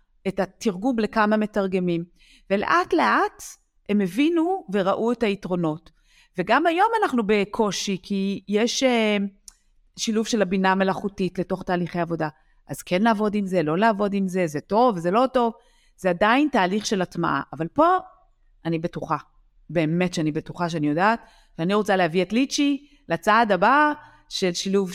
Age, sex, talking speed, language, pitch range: 40-59, female, 145 wpm, Hebrew, 180-245 Hz